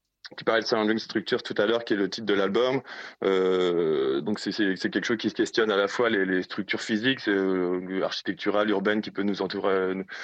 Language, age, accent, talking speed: French, 20-39, French, 215 wpm